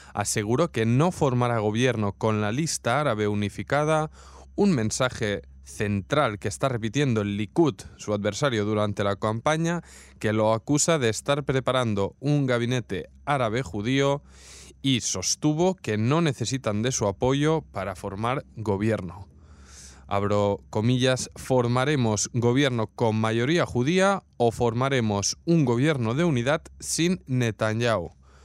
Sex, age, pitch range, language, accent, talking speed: male, 20-39, 105-140 Hz, Spanish, Spanish, 125 wpm